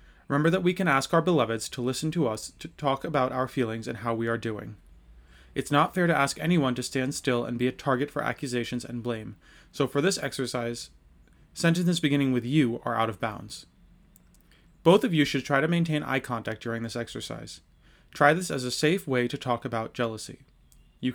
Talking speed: 205 wpm